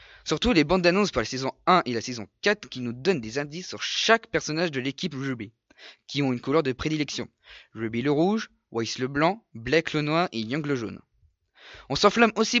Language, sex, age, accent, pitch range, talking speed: French, male, 20-39, French, 130-185 Hz, 215 wpm